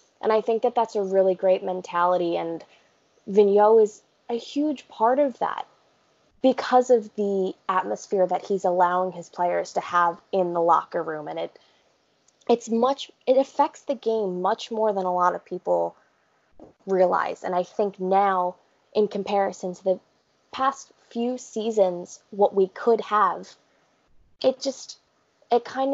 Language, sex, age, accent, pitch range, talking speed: English, female, 20-39, American, 185-235 Hz, 155 wpm